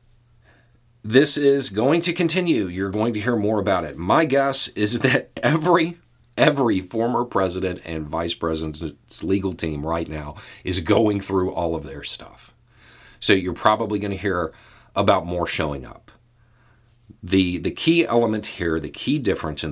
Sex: male